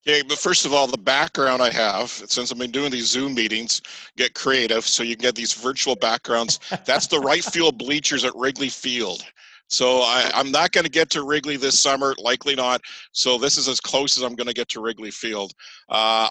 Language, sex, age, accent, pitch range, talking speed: English, male, 50-69, American, 110-140 Hz, 215 wpm